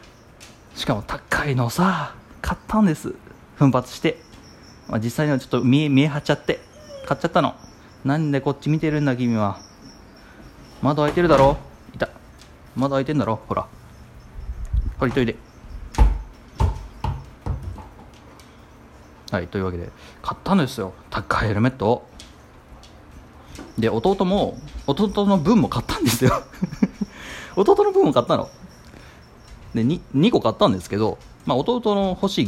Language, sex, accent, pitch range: Japanese, male, native, 100-155 Hz